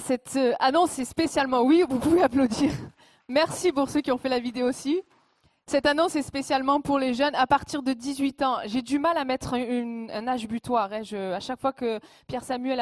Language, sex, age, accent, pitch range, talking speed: French, female, 20-39, French, 235-285 Hz, 210 wpm